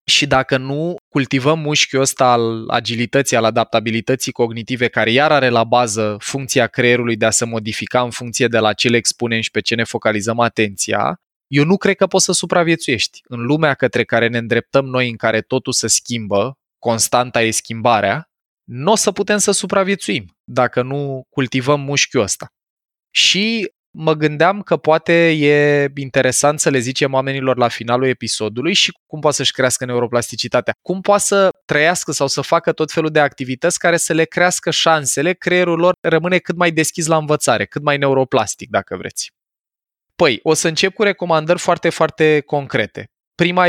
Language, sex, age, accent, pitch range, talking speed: Romanian, male, 20-39, native, 120-160 Hz, 175 wpm